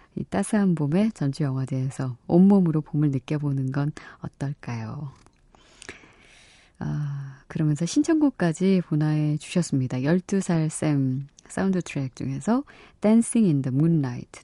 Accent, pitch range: native, 135-175 Hz